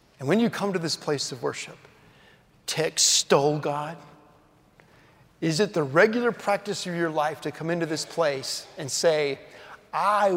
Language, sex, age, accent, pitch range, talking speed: English, male, 40-59, American, 145-185 Hz, 160 wpm